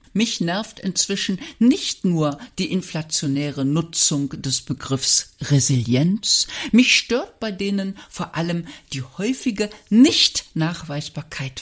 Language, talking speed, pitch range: German, 110 wpm, 140-220 Hz